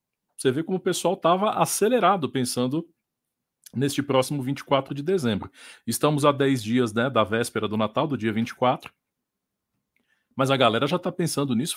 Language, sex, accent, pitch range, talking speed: Portuguese, male, Brazilian, 125-185 Hz, 165 wpm